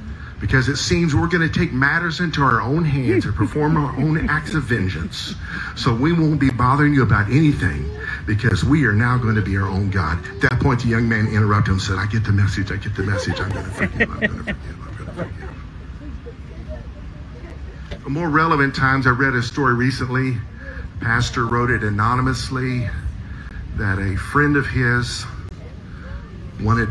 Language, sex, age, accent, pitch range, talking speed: English, male, 50-69, American, 90-120 Hz, 185 wpm